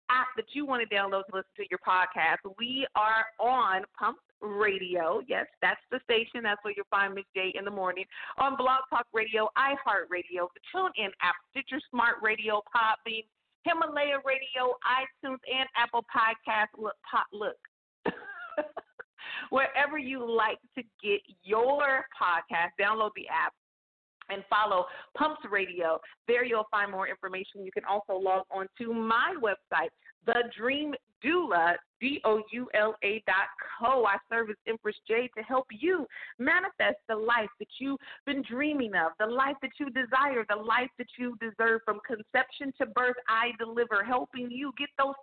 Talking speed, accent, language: 165 wpm, American, English